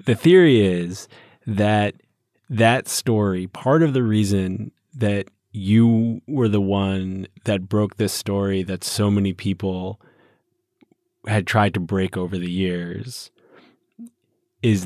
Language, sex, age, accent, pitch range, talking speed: English, male, 20-39, American, 95-115 Hz, 125 wpm